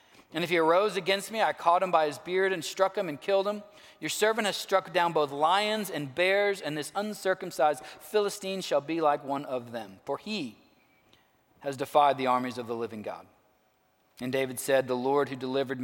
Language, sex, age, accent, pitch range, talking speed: English, male, 40-59, American, 140-205 Hz, 205 wpm